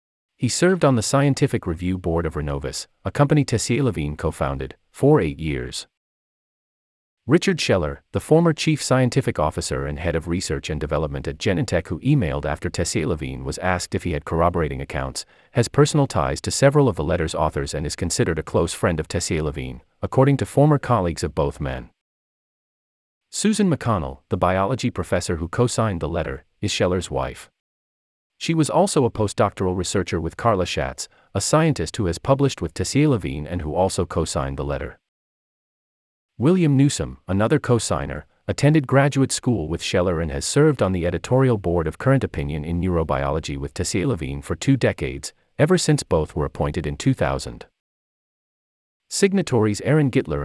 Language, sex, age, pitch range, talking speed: English, male, 40-59, 75-125 Hz, 165 wpm